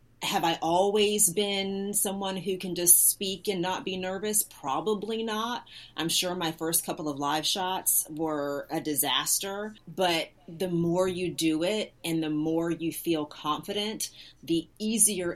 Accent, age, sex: American, 30-49, female